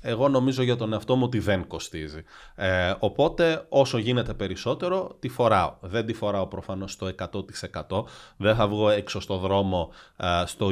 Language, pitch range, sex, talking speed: English, 100-135 Hz, male, 160 wpm